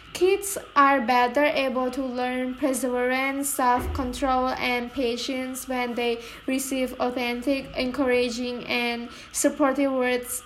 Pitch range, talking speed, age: 250-290 Hz, 110 wpm, 10-29